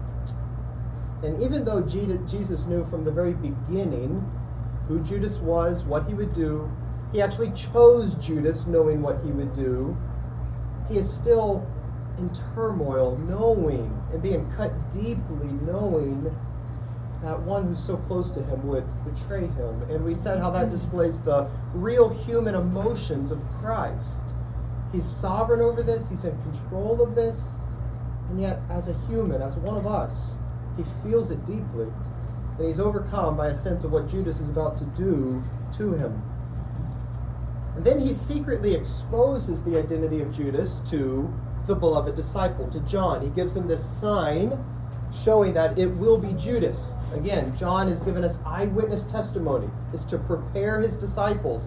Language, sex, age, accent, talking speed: English, male, 40-59, American, 155 wpm